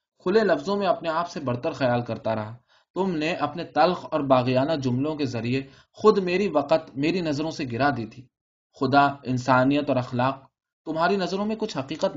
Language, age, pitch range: Urdu, 20-39, 130-170 Hz